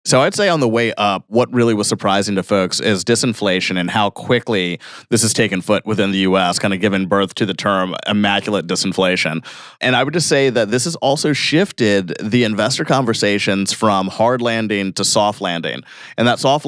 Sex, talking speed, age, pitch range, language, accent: male, 200 wpm, 30-49, 100-125 Hz, English, American